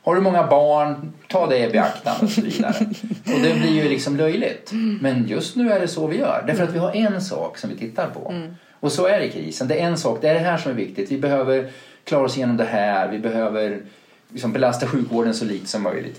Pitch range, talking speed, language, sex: 110-170 Hz, 250 wpm, Swedish, male